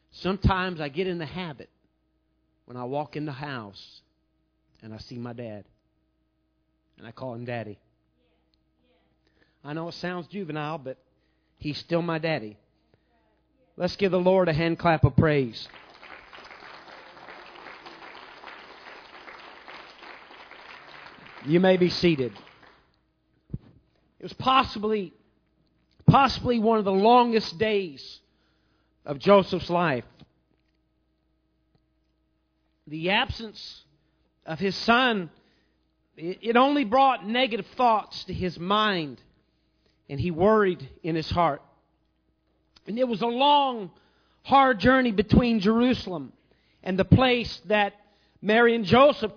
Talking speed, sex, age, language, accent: 110 wpm, male, 40-59, English, American